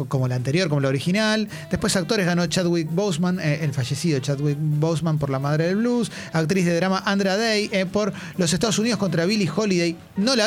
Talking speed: 205 wpm